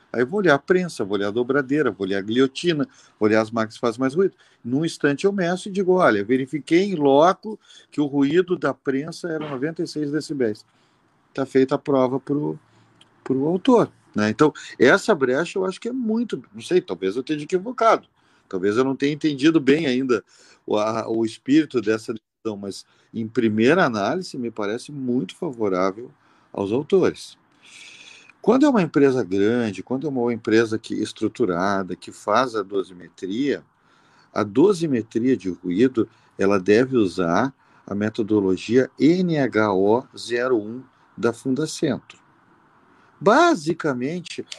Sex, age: male, 40-59